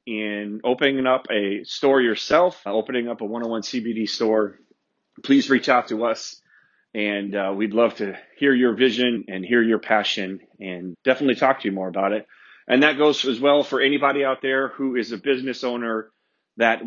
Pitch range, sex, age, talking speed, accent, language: 105-130 Hz, male, 30-49, 185 wpm, American, English